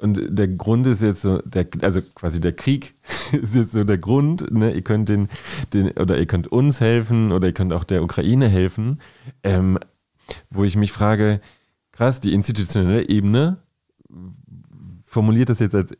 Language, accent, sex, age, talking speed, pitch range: German, German, male, 30-49, 175 wpm, 95-120 Hz